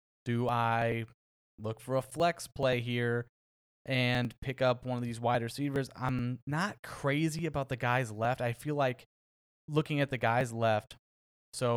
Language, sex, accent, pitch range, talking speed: English, male, American, 110-130 Hz, 165 wpm